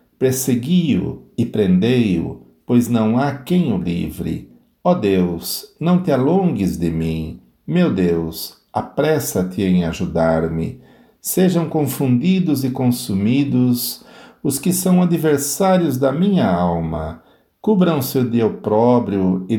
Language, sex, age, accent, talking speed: Portuguese, male, 60-79, Brazilian, 110 wpm